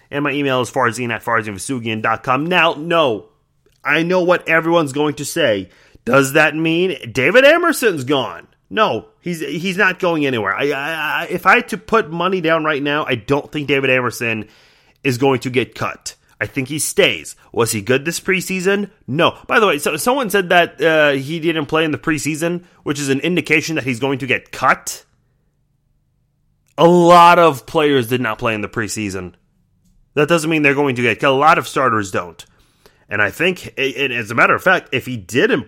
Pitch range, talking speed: 130-165 Hz, 200 wpm